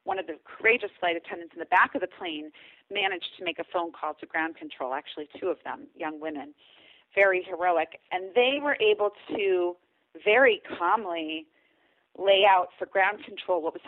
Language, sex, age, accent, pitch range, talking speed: English, female, 40-59, American, 160-215 Hz, 185 wpm